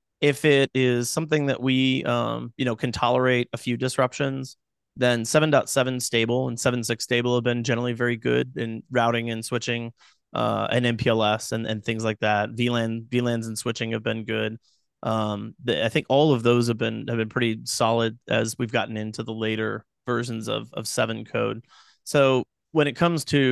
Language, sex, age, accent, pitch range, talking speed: English, male, 30-49, American, 115-130 Hz, 185 wpm